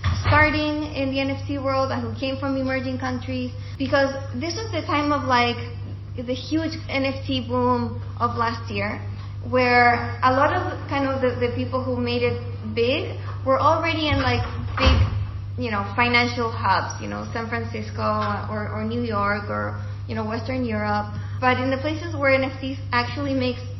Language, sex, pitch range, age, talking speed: English, female, 100-120 Hz, 20-39, 170 wpm